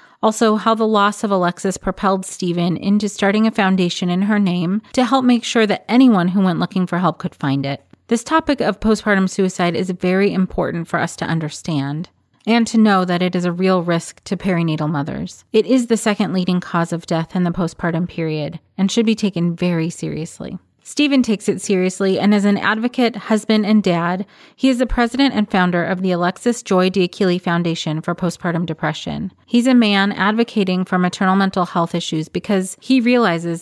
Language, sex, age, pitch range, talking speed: English, female, 30-49, 170-210 Hz, 195 wpm